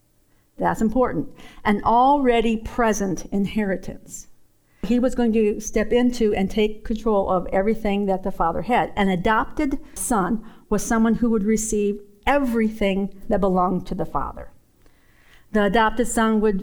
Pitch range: 205-245 Hz